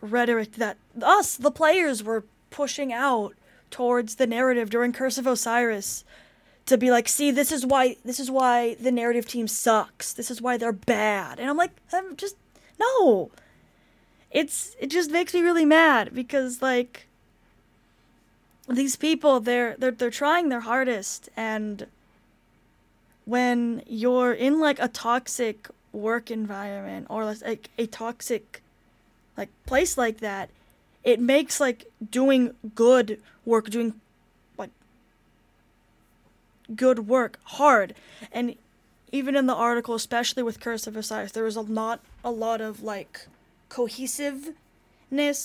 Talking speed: 135 wpm